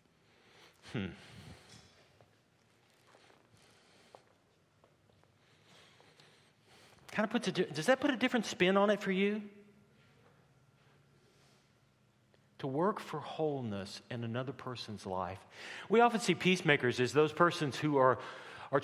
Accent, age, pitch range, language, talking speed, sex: American, 50-69, 125-185 Hz, English, 110 wpm, male